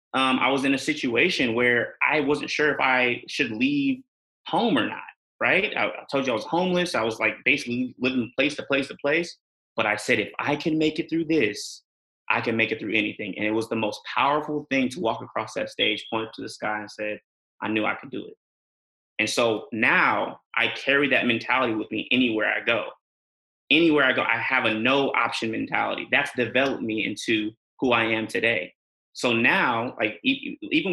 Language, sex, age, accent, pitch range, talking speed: English, male, 30-49, American, 120-205 Hz, 210 wpm